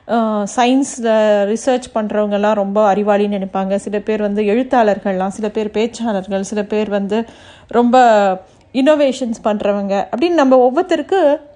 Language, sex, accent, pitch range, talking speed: Tamil, female, native, 215-285 Hz, 115 wpm